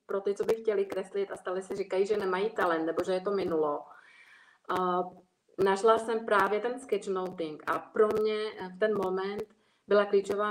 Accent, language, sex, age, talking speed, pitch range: native, Czech, female, 30-49, 175 wpm, 185-215 Hz